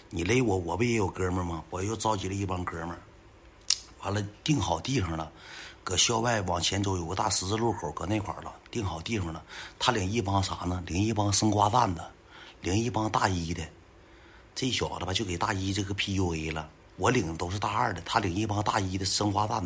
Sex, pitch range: male, 90-110 Hz